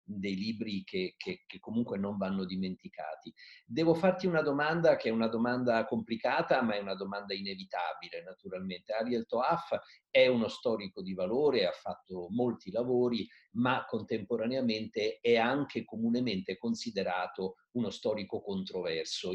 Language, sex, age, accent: Italian, male, 50-69, native